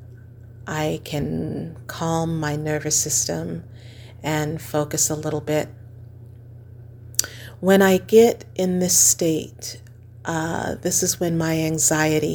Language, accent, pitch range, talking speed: English, American, 120-175 Hz, 110 wpm